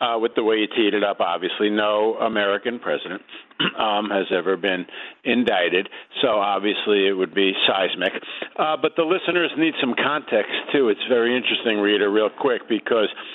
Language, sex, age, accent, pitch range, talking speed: English, male, 50-69, American, 105-155 Hz, 170 wpm